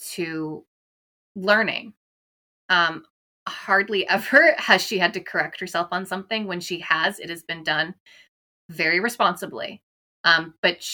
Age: 20-39